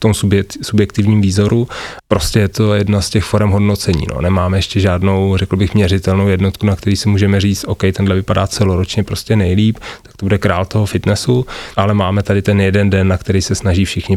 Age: 30-49